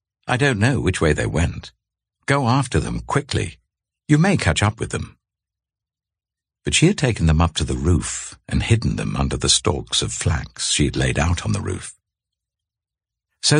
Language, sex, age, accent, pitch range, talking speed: English, male, 60-79, British, 80-110 Hz, 185 wpm